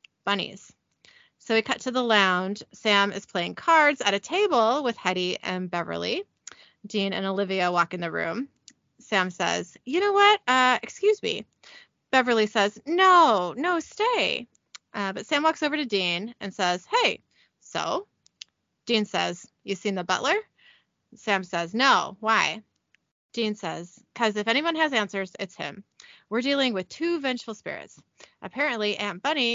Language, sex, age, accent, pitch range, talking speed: English, female, 20-39, American, 195-265 Hz, 155 wpm